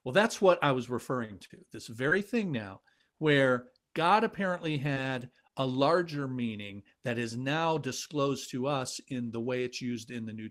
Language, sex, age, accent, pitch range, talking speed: English, male, 50-69, American, 125-155 Hz, 185 wpm